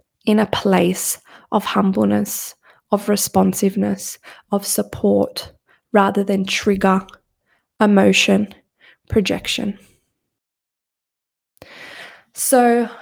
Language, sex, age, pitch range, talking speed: English, female, 20-39, 195-240 Hz, 70 wpm